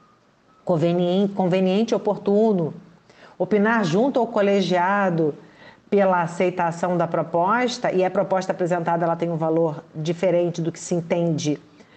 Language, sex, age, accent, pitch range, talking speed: Portuguese, female, 40-59, Brazilian, 180-230 Hz, 120 wpm